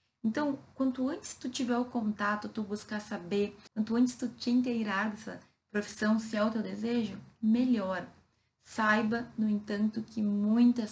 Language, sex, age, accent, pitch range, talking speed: Portuguese, female, 20-39, Brazilian, 185-220 Hz, 155 wpm